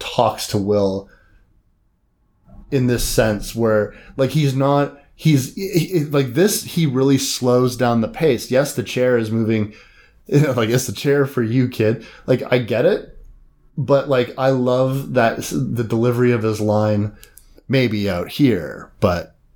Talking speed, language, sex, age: 160 wpm, English, male, 30-49